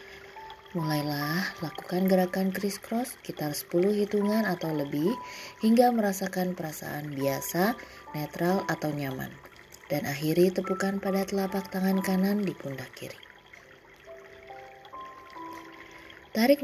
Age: 20-39